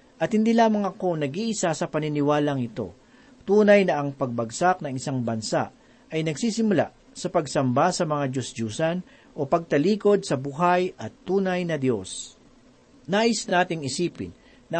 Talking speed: 140 wpm